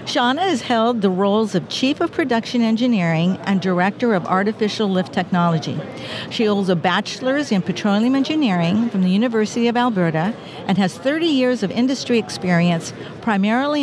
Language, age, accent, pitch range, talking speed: English, 50-69, American, 180-235 Hz, 155 wpm